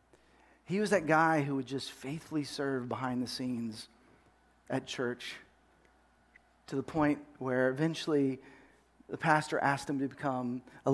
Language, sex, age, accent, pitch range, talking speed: English, male, 40-59, American, 135-195 Hz, 145 wpm